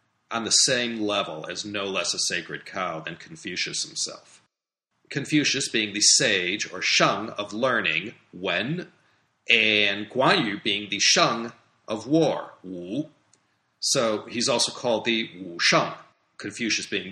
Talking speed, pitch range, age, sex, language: 140 wpm, 110-155 Hz, 40-59, male, English